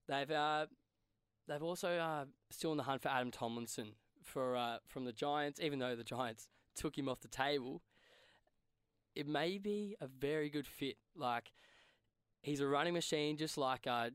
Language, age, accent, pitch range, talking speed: English, 10-29, Australian, 120-145 Hz, 175 wpm